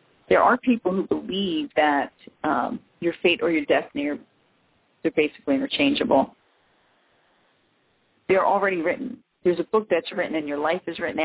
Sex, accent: female, American